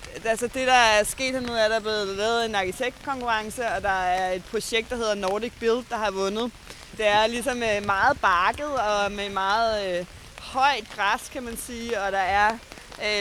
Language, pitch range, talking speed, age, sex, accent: Danish, 200-240 Hz, 195 wpm, 20-39, female, native